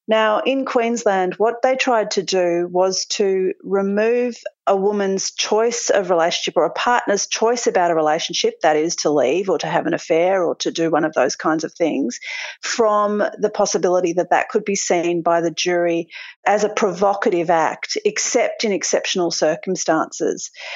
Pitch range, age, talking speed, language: 180-235 Hz, 40-59, 175 wpm, English